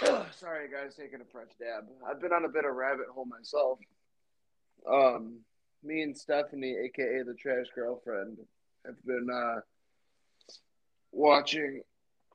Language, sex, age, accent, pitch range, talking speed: English, male, 20-39, American, 120-145 Hz, 130 wpm